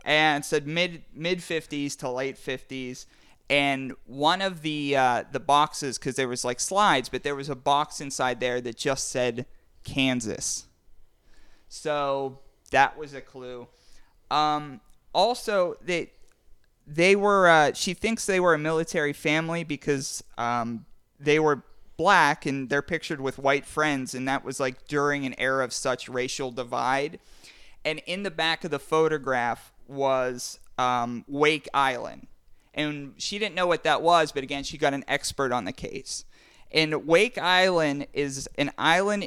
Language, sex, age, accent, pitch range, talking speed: English, male, 30-49, American, 130-160 Hz, 155 wpm